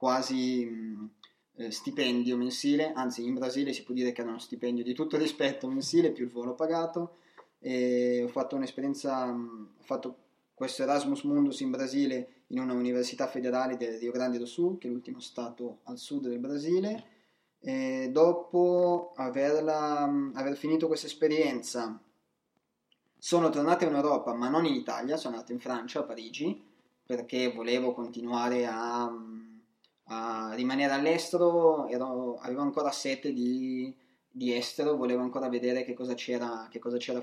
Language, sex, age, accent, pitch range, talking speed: Italian, male, 20-39, native, 125-155 Hz, 155 wpm